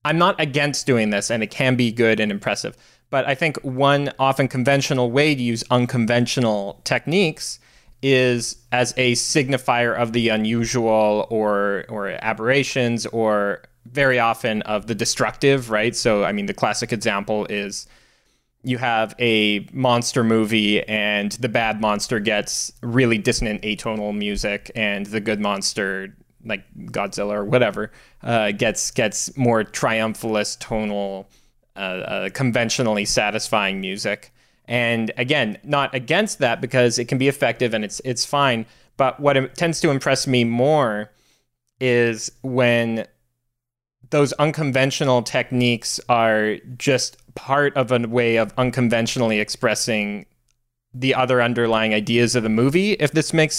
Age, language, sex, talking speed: 20-39, English, male, 140 wpm